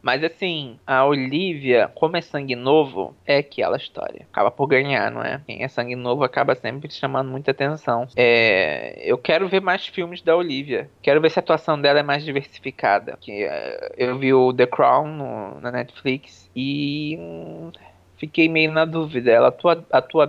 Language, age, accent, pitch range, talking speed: Portuguese, 20-39, Brazilian, 130-160 Hz, 165 wpm